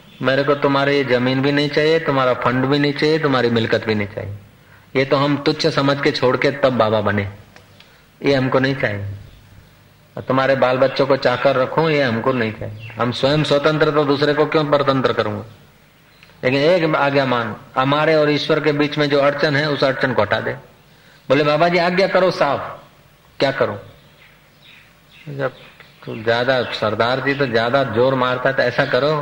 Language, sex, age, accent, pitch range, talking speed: Hindi, male, 40-59, native, 125-160 Hz, 115 wpm